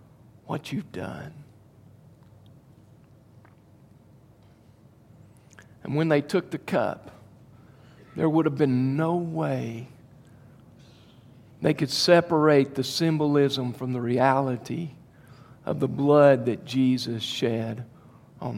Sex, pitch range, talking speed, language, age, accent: male, 125-170 Hz, 95 wpm, English, 50-69, American